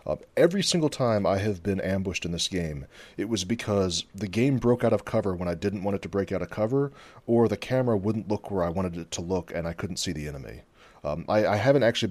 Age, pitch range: 30-49, 90-110 Hz